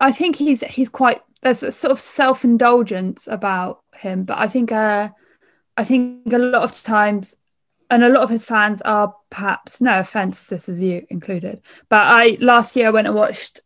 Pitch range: 190-235 Hz